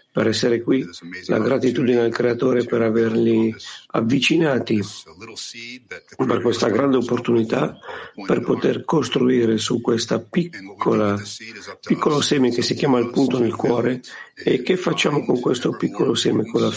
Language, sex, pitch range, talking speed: Italian, male, 115-135 Hz, 130 wpm